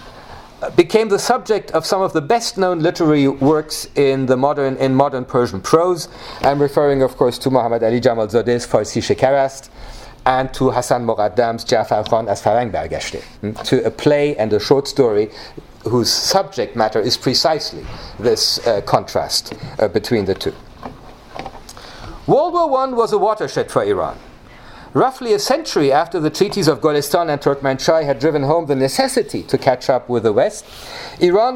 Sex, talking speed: male, 160 wpm